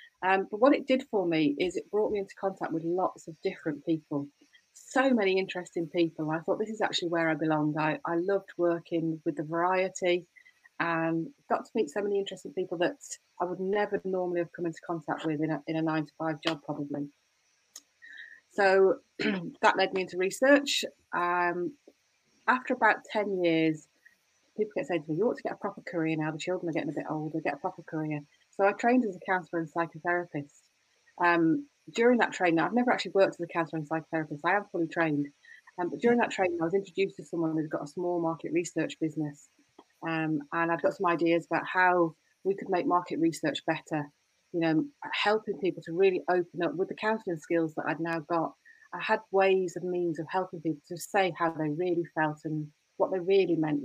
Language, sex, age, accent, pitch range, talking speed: English, female, 30-49, British, 160-195 Hz, 215 wpm